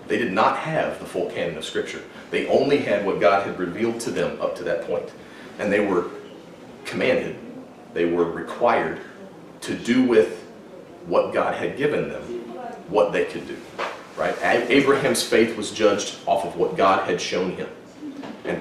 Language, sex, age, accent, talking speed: English, male, 40-59, American, 175 wpm